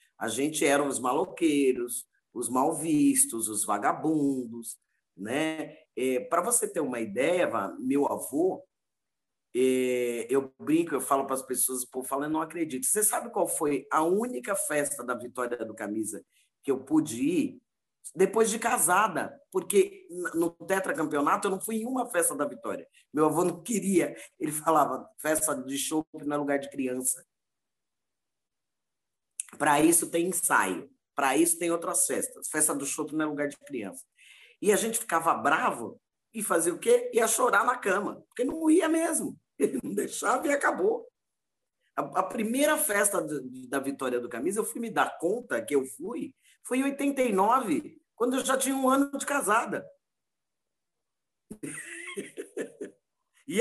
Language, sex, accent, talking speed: Portuguese, male, Brazilian, 160 wpm